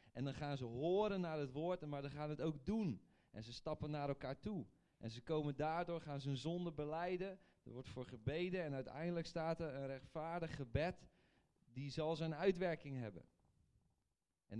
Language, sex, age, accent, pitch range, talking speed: English, male, 40-59, Dutch, 120-165 Hz, 190 wpm